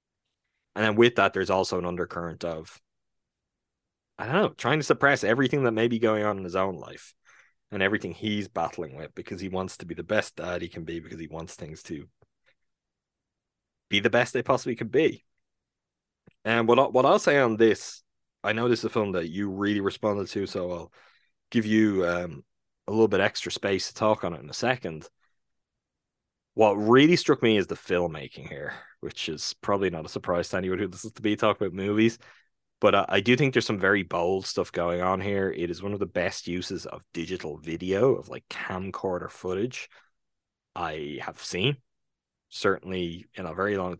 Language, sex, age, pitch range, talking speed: English, male, 20-39, 85-105 Hz, 200 wpm